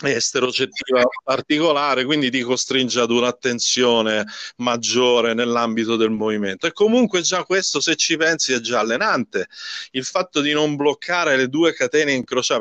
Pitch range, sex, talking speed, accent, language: 125-175 Hz, male, 145 wpm, native, Italian